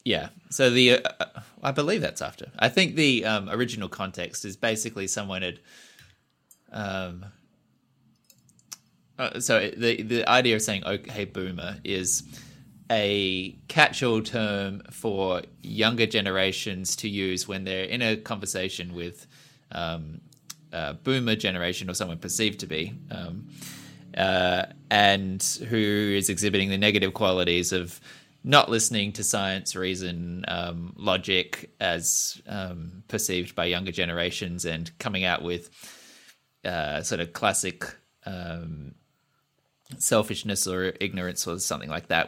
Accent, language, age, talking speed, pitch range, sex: Australian, English, 20-39, 130 wpm, 90-110 Hz, male